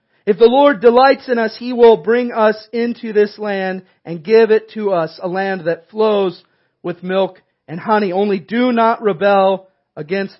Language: English